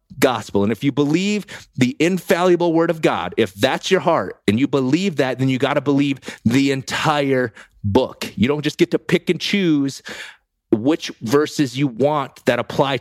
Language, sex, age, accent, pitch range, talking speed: English, male, 30-49, American, 125-165 Hz, 185 wpm